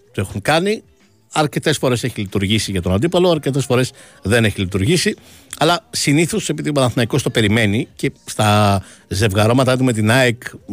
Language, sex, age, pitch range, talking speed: Greek, male, 60-79, 95-130 Hz, 155 wpm